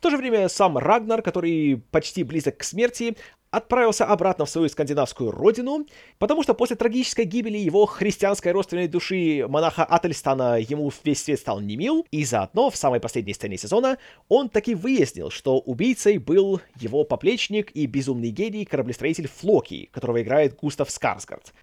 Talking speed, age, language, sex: 160 wpm, 30-49, Russian, male